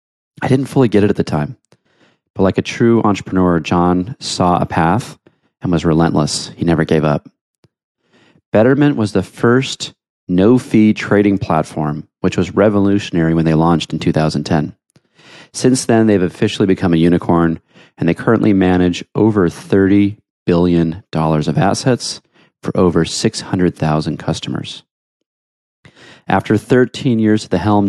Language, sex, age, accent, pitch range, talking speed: English, male, 30-49, American, 85-105 Hz, 140 wpm